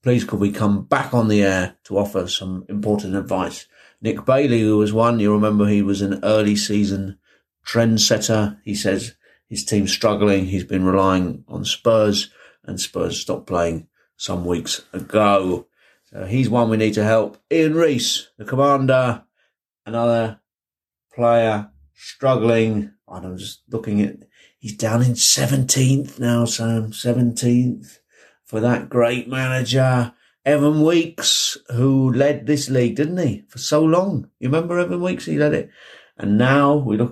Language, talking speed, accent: English, 150 wpm, British